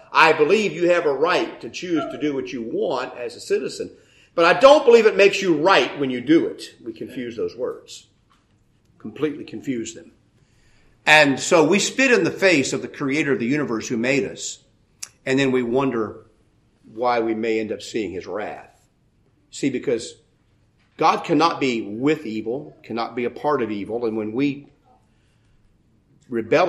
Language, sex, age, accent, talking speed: English, male, 50-69, American, 180 wpm